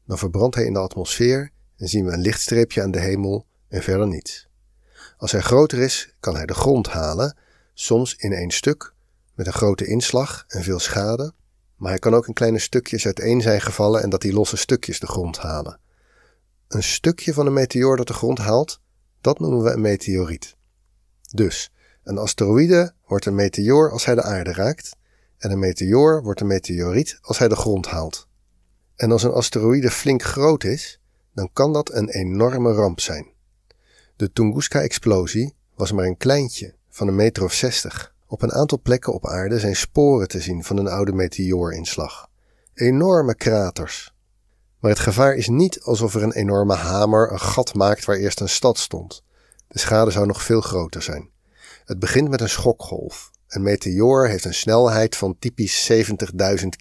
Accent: Dutch